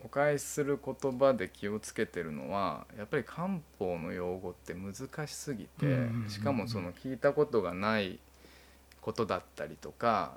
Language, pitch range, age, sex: Japanese, 85-130 Hz, 20-39, male